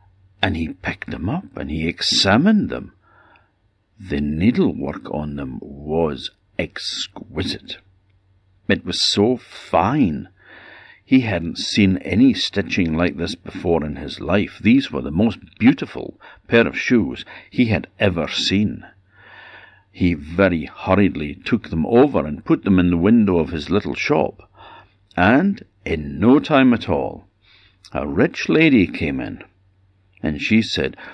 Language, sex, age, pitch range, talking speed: English, male, 60-79, 85-105 Hz, 140 wpm